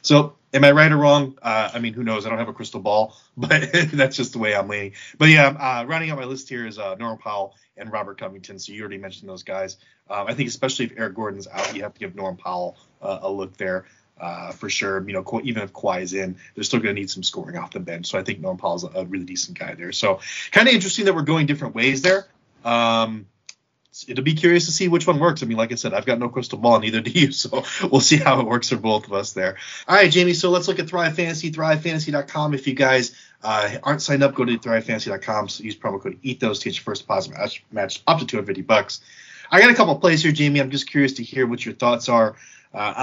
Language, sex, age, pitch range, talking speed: English, male, 30-49, 110-150 Hz, 260 wpm